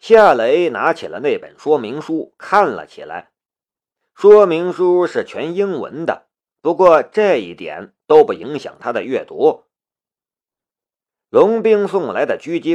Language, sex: Chinese, male